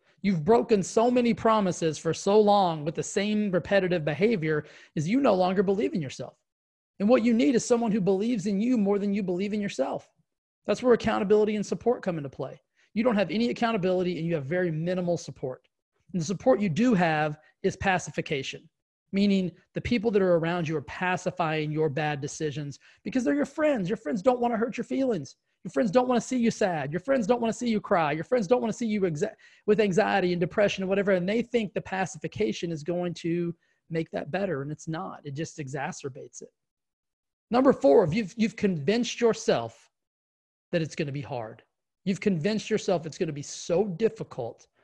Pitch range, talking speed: 160-215 Hz, 205 wpm